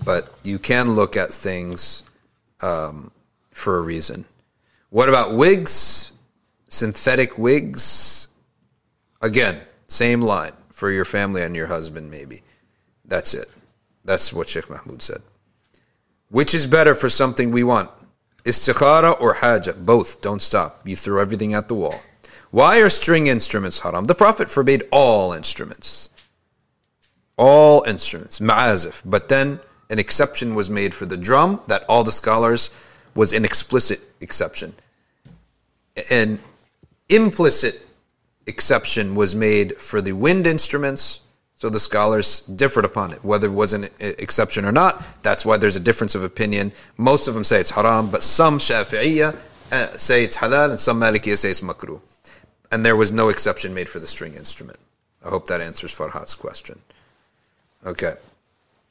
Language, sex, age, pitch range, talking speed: English, male, 40-59, 100-135 Hz, 150 wpm